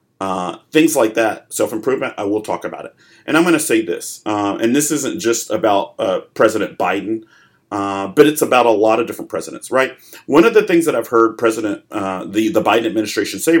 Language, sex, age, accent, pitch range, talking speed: English, male, 40-59, American, 105-140 Hz, 215 wpm